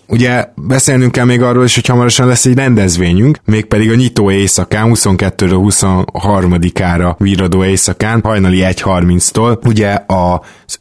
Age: 20-39